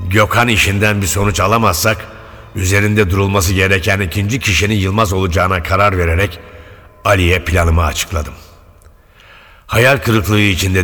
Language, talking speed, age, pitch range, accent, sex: Turkish, 110 wpm, 60-79, 85-110 Hz, native, male